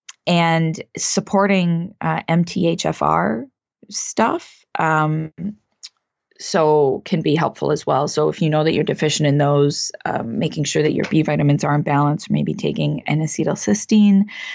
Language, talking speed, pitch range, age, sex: English, 140 wpm, 150-180 Hz, 20-39, female